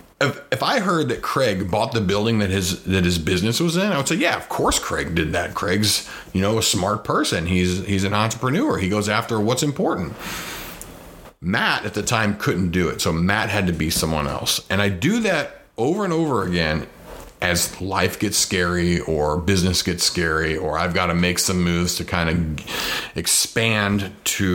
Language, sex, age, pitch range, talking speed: English, male, 40-59, 85-105 Hz, 200 wpm